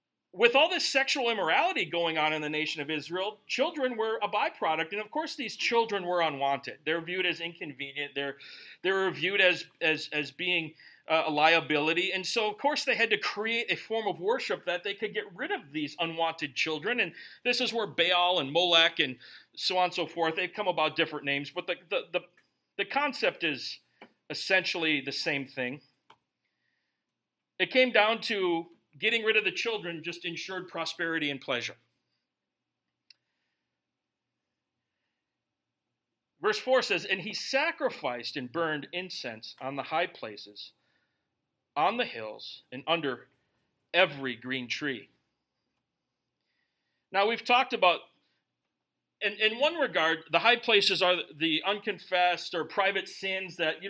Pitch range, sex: 160-215 Hz, male